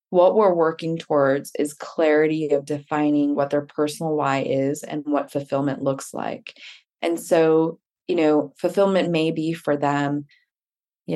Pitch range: 140-165 Hz